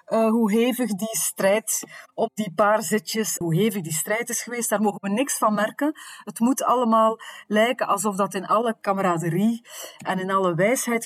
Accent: Dutch